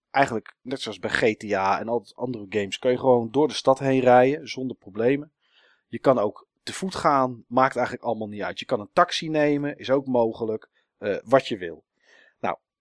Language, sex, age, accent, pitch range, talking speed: Dutch, male, 40-59, Dutch, 105-135 Hz, 205 wpm